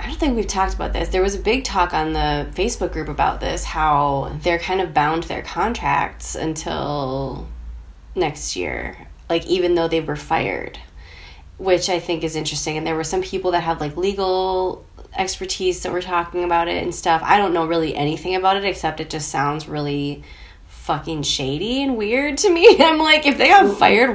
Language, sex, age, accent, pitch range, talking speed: English, female, 20-39, American, 145-190 Hz, 200 wpm